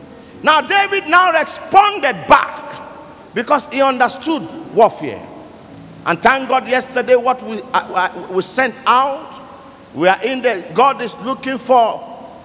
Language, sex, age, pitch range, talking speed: English, male, 50-69, 255-345 Hz, 130 wpm